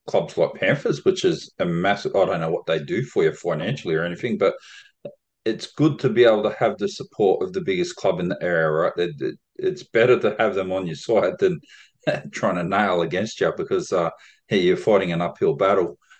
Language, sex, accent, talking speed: English, male, Australian, 215 wpm